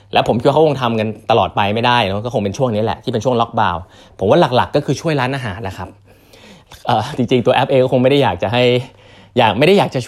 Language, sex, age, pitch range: Thai, male, 20-39, 105-135 Hz